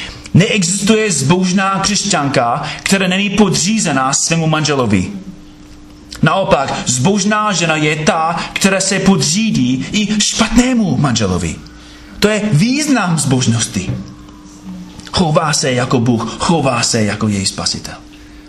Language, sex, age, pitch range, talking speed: Czech, male, 30-49, 110-170 Hz, 105 wpm